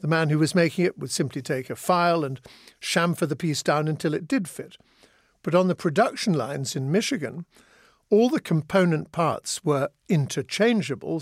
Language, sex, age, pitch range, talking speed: English, male, 50-69, 140-180 Hz, 175 wpm